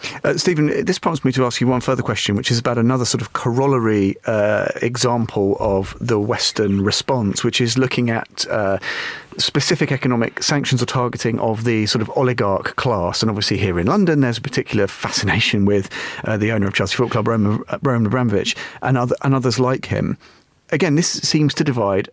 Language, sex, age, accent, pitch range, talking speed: English, male, 40-59, British, 110-140 Hz, 185 wpm